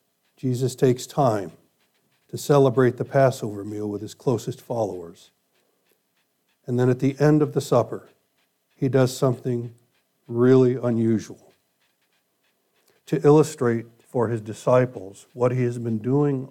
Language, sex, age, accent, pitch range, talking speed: English, male, 60-79, American, 115-135 Hz, 125 wpm